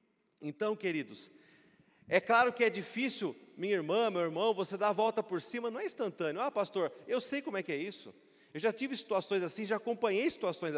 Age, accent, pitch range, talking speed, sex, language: 40-59, Brazilian, 215-280 Hz, 205 wpm, male, Portuguese